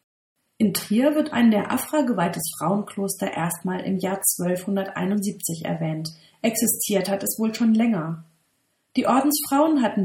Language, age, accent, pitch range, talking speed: German, 40-59, German, 175-235 Hz, 130 wpm